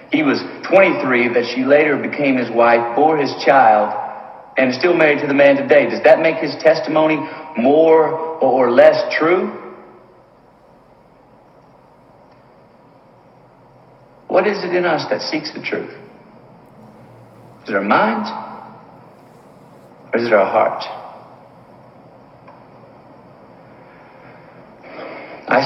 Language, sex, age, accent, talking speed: English, male, 60-79, American, 110 wpm